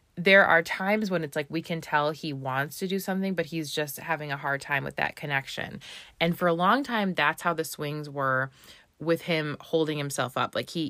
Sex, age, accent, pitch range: female, 20-39, American, 145-180 Hz